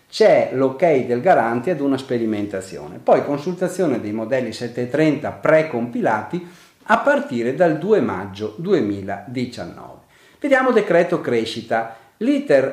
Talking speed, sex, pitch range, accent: 110 wpm, male, 120-170 Hz, native